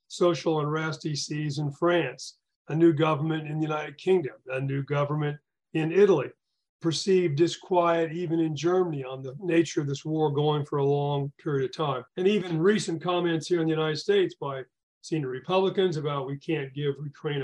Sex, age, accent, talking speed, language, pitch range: male, 40-59, American, 180 wpm, English, 145-175 Hz